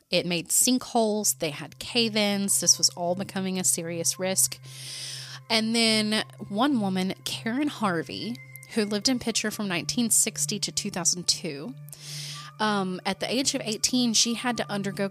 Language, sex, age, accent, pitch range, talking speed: English, female, 30-49, American, 155-210 Hz, 145 wpm